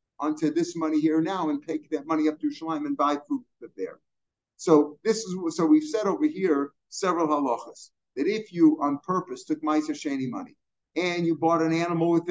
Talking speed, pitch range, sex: 205 wpm, 150-230 Hz, male